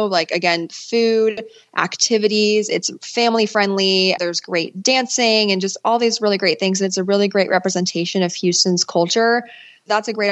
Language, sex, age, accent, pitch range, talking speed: English, female, 20-39, American, 180-210 Hz, 170 wpm